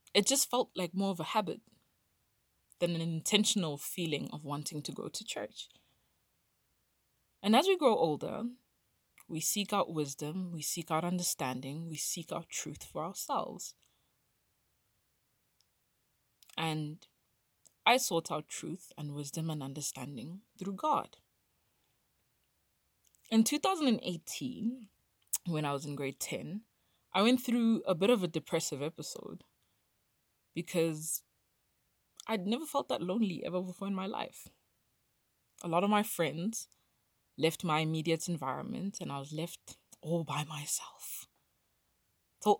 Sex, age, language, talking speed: female, 20-39, English, 130 wpm